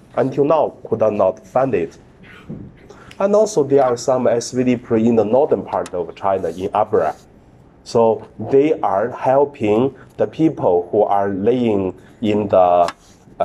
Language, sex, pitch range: Chinese, male, 100-140 Hz